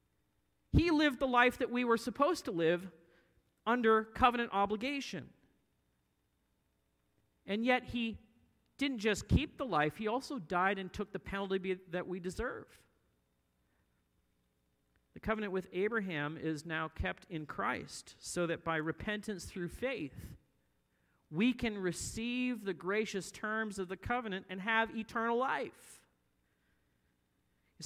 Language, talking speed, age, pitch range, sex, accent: English, 130 wpm, 40-59, 150-225 Hz, male, American